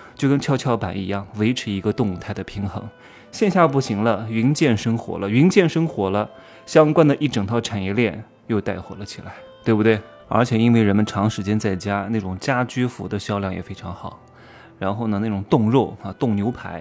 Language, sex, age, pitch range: Chinese, male, 20-39, 100-130 Hz